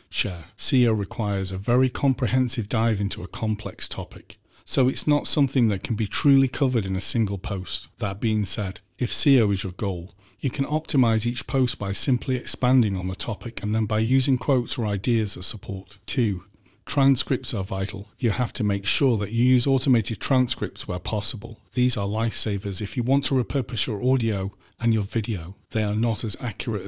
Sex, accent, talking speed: male, British, 190 wpm